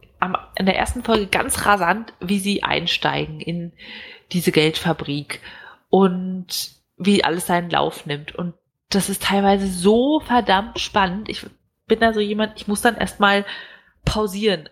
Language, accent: German, German